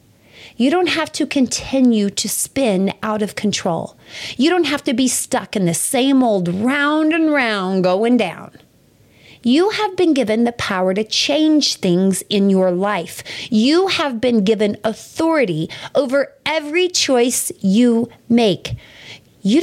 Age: 30-49